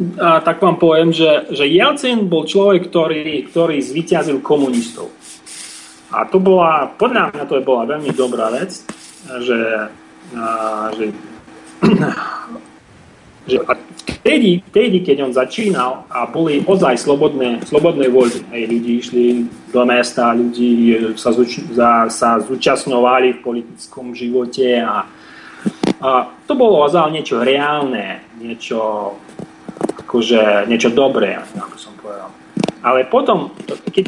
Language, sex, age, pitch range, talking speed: Slovak, male, 30-49, 120-165 Hz, 120 wpm